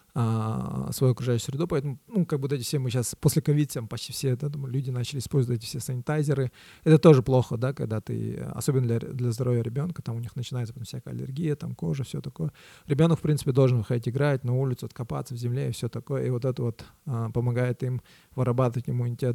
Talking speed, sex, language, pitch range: 210 wpm, male, Russian, 120-145 Hz